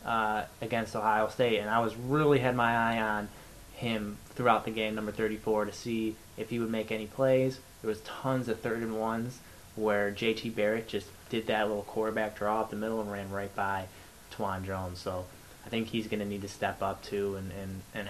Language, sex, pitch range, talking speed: English, male, 100-115 Hz, 215 wpm